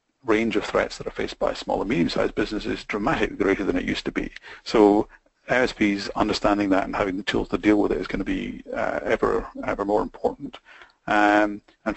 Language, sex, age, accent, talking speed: English, male, 40-59, British, 205 wpm